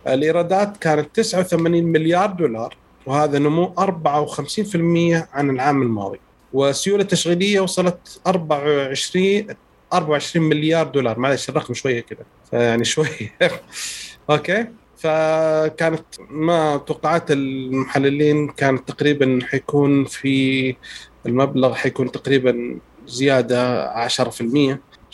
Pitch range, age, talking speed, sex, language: 130-165 Hz, 30-49, 90 wpm, male, Arabic